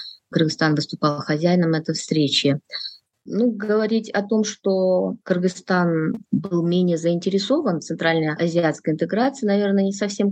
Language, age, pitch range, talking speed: Russian, 20-39, 155-200 Hz, 120 wpm